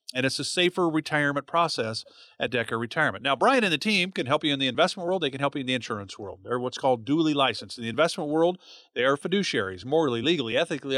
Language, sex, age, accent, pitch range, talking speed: English, male, 40-59, American, 130-180 Hz, 240 wpm